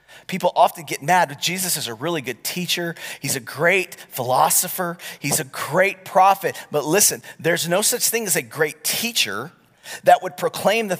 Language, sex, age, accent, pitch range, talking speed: English, male, 40-59, American, 110-170 Hz, 180 wpm